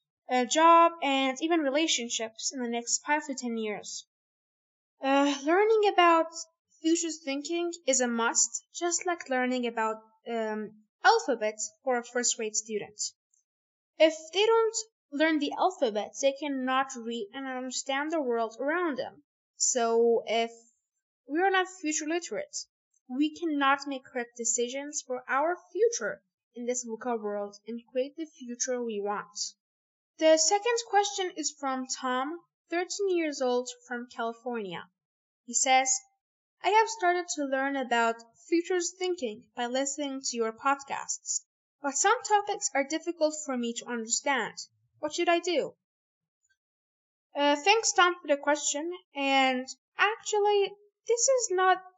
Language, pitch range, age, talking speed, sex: English, 240-345 Hz, 10-29, 140 wpm, female